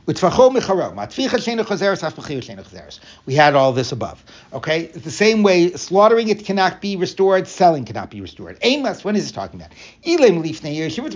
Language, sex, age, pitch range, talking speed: English, male, 60-79, 145-210 Hz, 135 wpm